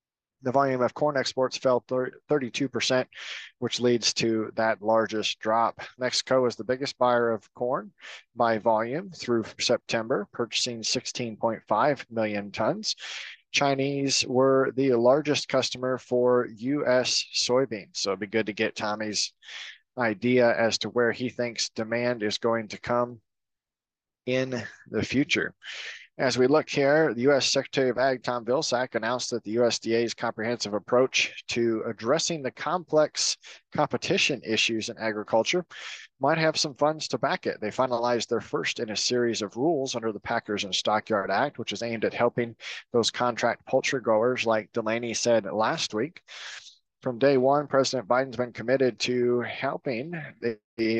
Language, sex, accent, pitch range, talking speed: English, male, American, 110-130 Hz, 150 wpm